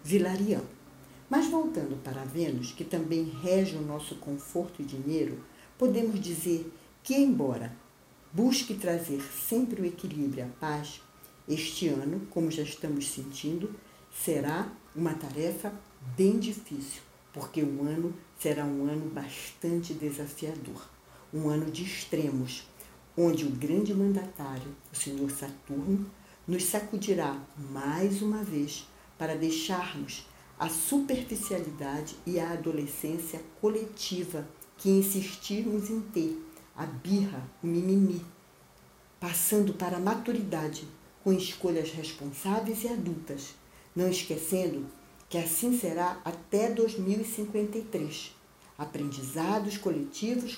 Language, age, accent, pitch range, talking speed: Portuguese, 60-79, Brazilian, 150-200 Hz, 110 wpm